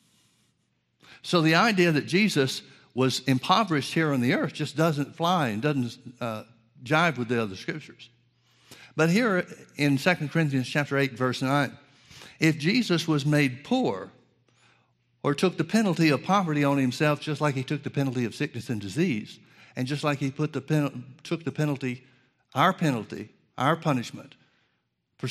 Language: English